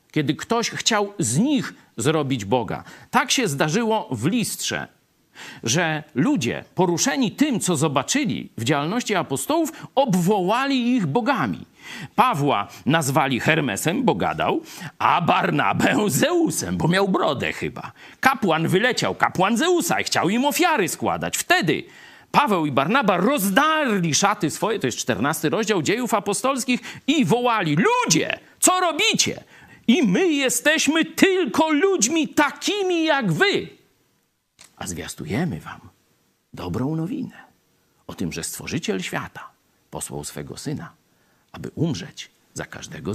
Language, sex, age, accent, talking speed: Polish, male, 50-69, native, 120 wpm